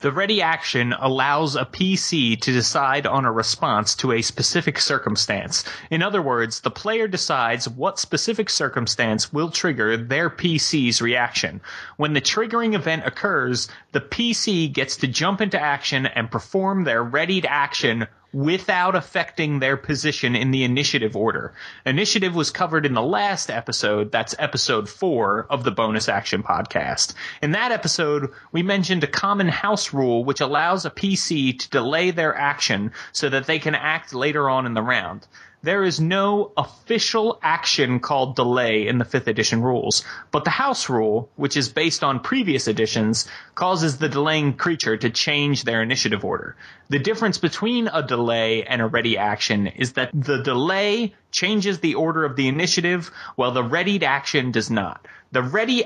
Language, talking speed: English, 165 wpm